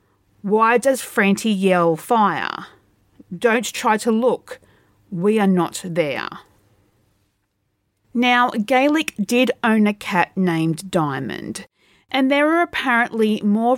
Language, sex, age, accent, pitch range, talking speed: English, female, 40-59, Australian, 175-235 Hz, 115 wpm